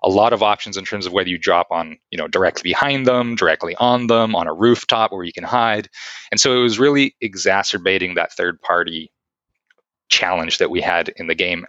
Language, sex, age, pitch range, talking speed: English, male, 30-49, 95-120 Hz, 215 wpm